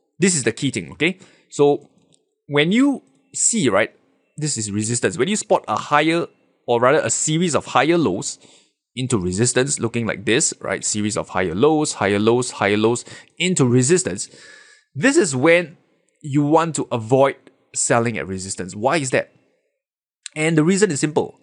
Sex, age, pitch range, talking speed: male, 20-39, 120-180 Hz, 170 wpm